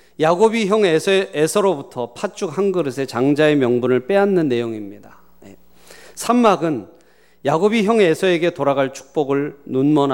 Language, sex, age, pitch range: Korean, male, 40-59, 130-180 Hz